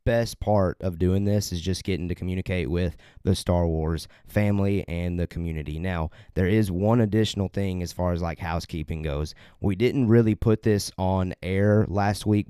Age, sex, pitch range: 30-49, male, 90-105 Hz